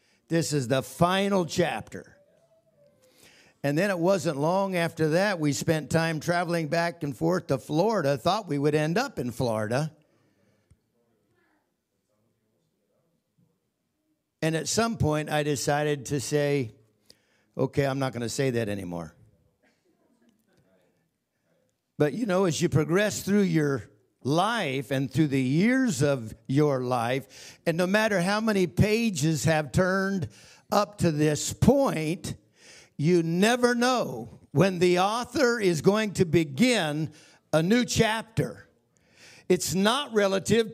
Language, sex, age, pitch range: English, male, 60-79, 145-205 Hz